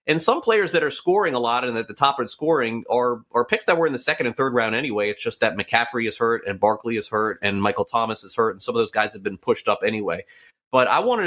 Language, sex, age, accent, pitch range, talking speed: English, male, 30-49, American, 110-145 Hz, 290 wpm